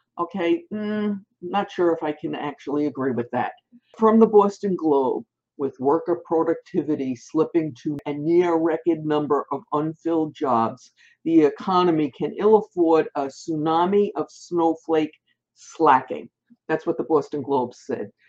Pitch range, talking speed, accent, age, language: 150-205 Hz, 140 wpm, American, 60-79, English